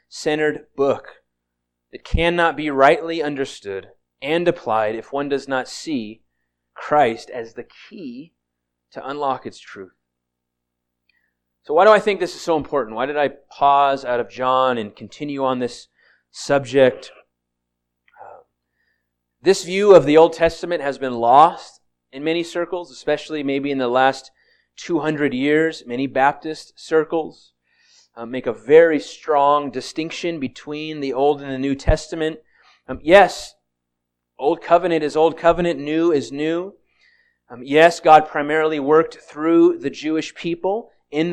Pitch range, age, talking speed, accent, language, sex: 125-165 Hz, 30-49, 140 wpm, American, English, male